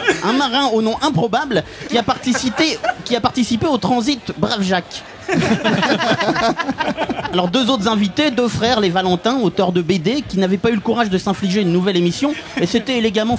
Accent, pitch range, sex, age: French, 220-290 Hz, male, 30-49